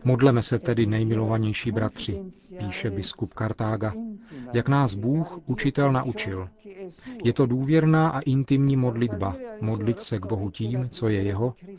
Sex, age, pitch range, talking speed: male, 40-59, 110-140 Hz, 135 wpm